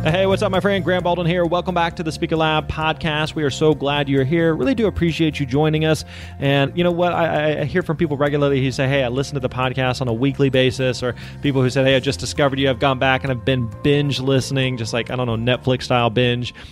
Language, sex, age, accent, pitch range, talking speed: English, male, 30-49, American, 130-155 Hz, 260 wpm